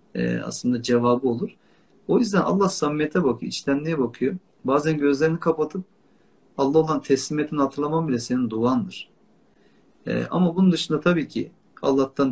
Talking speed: 120 wpm